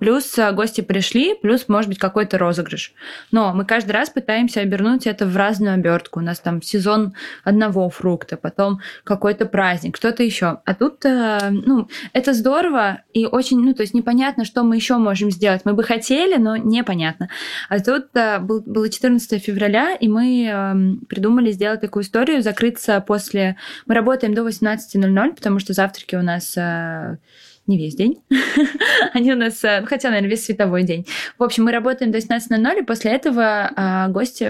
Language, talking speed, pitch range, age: Russian, 165 wpm, 195-235 Hz, 20-39